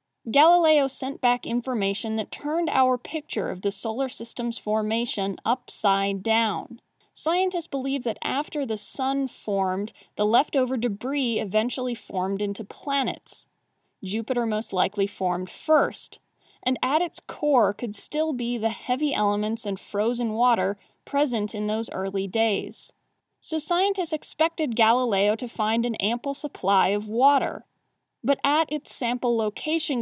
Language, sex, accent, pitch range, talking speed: English, female, American, 210-275 Hz, 135 wpm